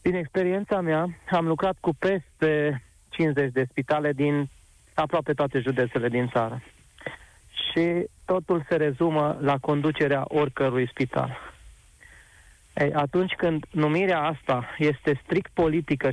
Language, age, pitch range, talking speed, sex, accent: Romanian, 30-49, 140-180 Hz, 120 wpm, male, native